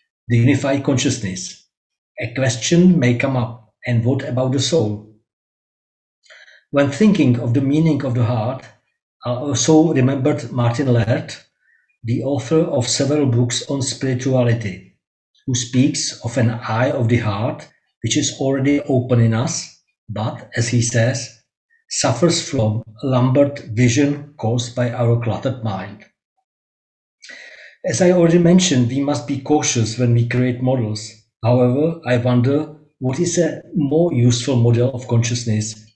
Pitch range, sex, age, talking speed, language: 120-145 Hz, male, 50-69, 140 wpm, English